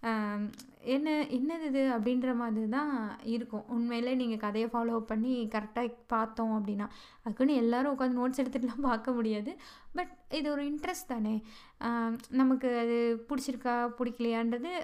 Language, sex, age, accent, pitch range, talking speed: Tamil, female, 20-39, native, 230-270 Hz, 125 wpm